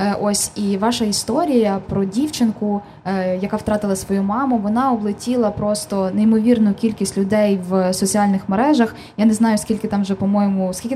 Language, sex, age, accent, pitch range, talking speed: Ukrainian, female, 20-39, native, 195-230 Hz, 150 wpm